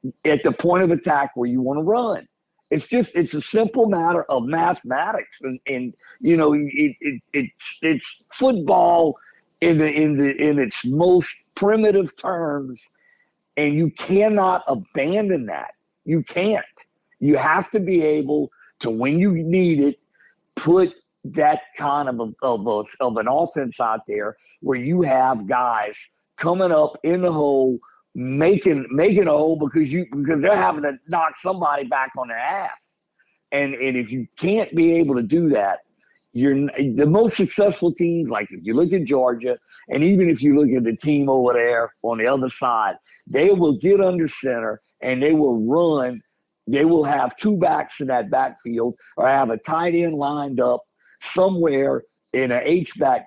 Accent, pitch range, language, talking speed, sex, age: American, 135-180 Hz, English, 170 wpm, male, 50-69